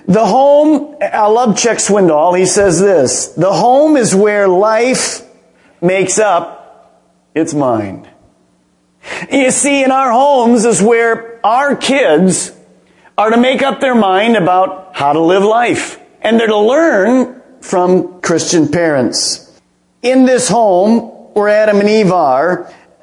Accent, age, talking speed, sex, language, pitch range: American, 40-59, 140 wpm, male, English, 185-230 Hz